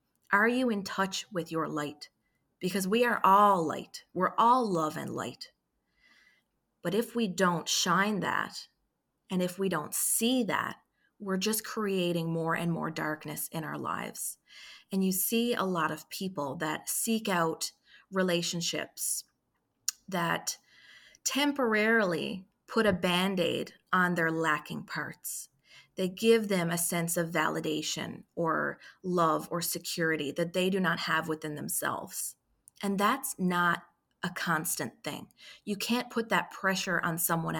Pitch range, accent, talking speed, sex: 165-215 Hz, American, 145 wpm, female